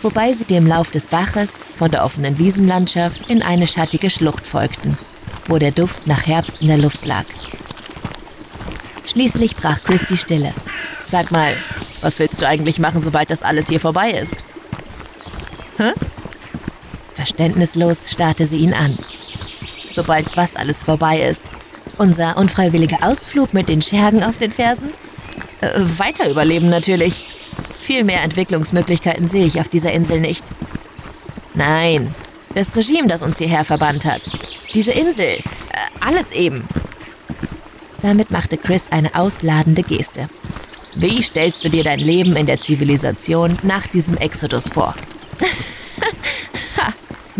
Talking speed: 135 wpm